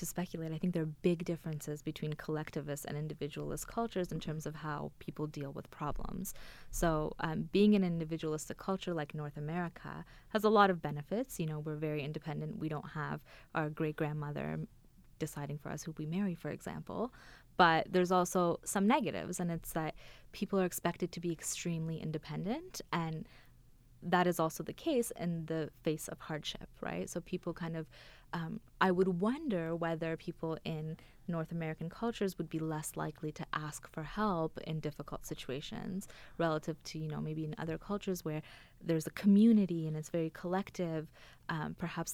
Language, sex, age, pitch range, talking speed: English, female, 20-39, 150-175 Hz, 175 wpm